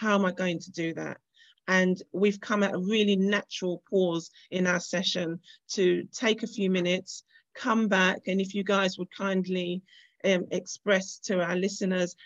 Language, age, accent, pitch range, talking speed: English, 40-59, British, 185-220 Hz, 175 wpm